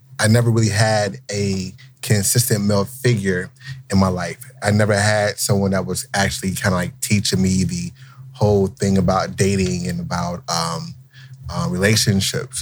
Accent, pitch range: American, 100-130 Hz